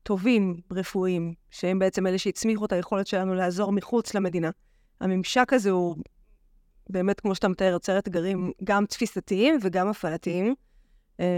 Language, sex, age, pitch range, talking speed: Hebrew, female, 20-39, 185-210 Hz, 130 wpm